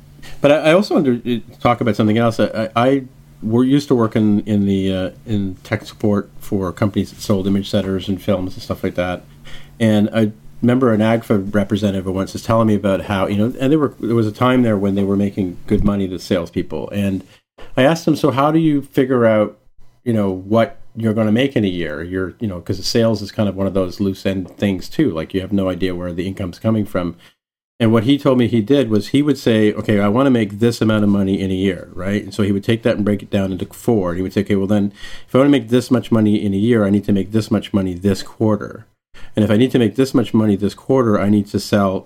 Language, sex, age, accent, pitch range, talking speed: English, male, 40-59, American, 100-115 Hz, 270 wpm